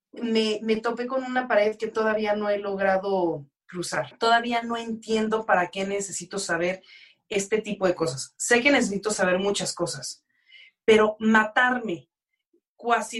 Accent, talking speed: Mexican, 145 wpm